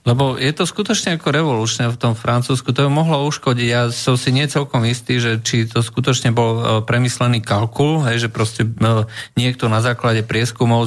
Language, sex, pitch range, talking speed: Slovak, male, 110-130 Hz, 180 wpm